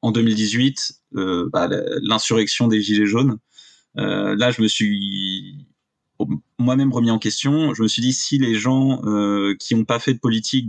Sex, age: male, 20-39